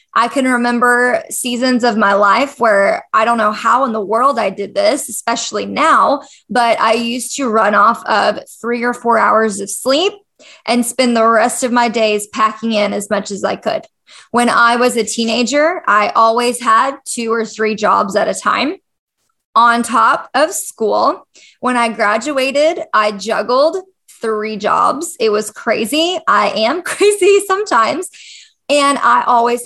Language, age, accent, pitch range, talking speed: English, 20-39, American, 220-280 Hz, 170 wpm